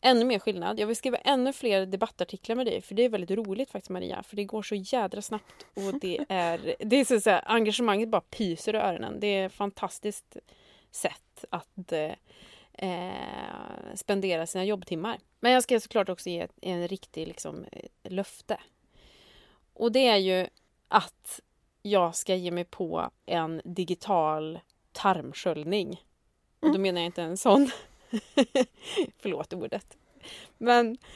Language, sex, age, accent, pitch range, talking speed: Swedish, female, 20-39, native, 185-240 Hz, 155 wpm